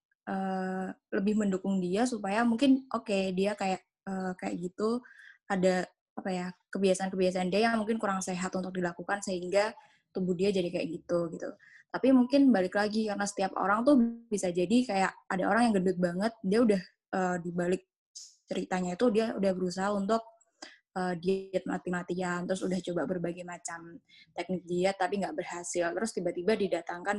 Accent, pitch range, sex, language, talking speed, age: native, 180-220 Hz, female, Indonesian, 160 wpm, 10-29